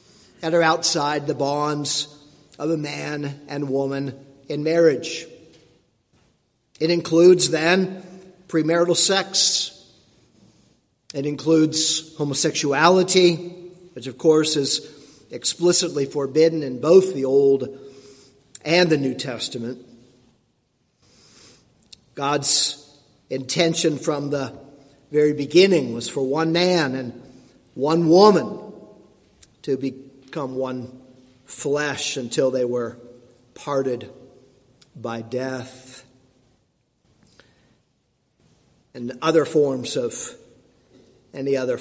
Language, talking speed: English, 90 wpm